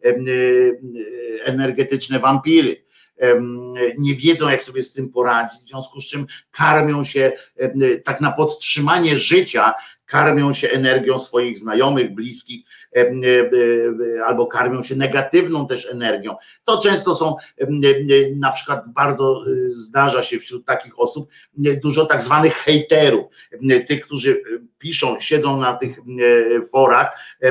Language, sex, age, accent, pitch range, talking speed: Polish, male, 50-69, native, 125-155 Hz, 115 wpm